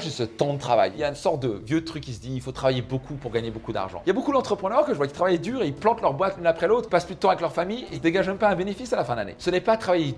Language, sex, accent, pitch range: French, male, French, 125-185 Hz